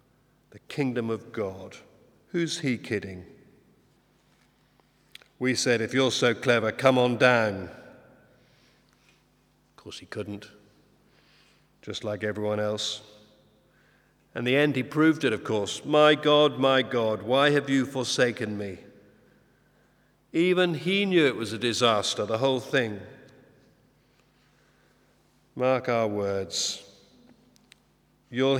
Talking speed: 115 wpm